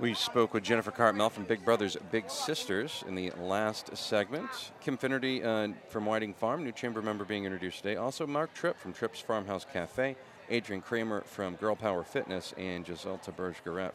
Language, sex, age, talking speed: English, male, 40-59, 180 wpm